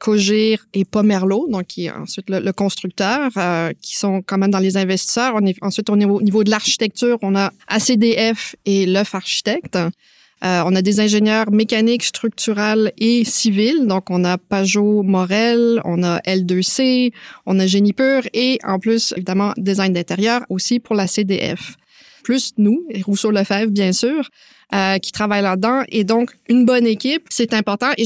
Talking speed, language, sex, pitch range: 170 wpm, French, female, 195-235 Hz